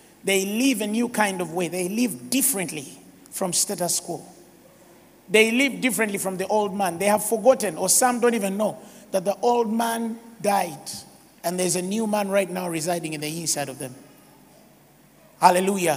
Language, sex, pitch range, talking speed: English, male, 195-245 Hz, 175 wpm